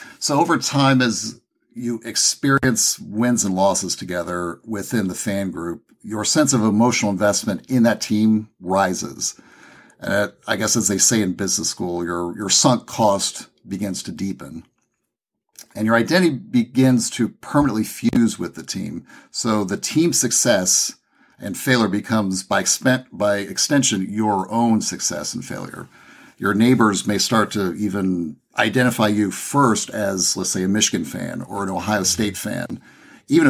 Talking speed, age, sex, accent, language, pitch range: 155 wpm, 50-69, male, American, English, 95-120 Hz